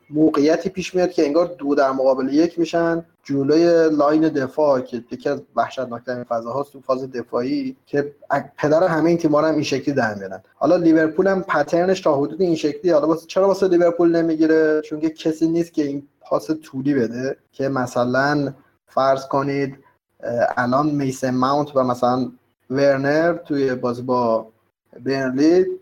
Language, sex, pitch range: Persian, male, 130-160 Hz